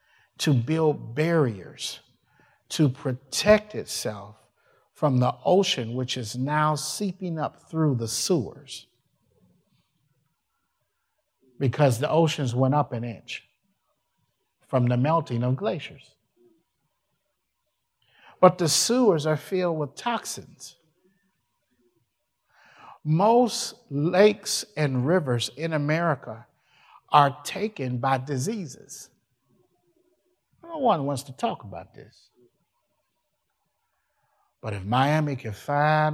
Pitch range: 115-155 Hz